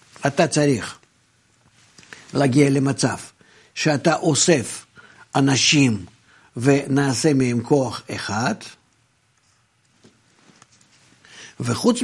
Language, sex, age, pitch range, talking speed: Hebrew, male, 60-79, 125-165 Hz, 60 wpm